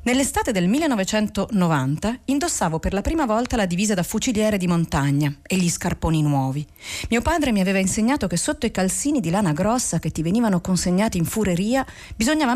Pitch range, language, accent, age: 165-235 Hz, Italian, native, 40-59